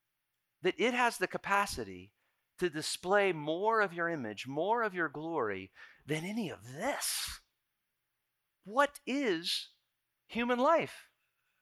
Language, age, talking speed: English, 40-59, 120 wpm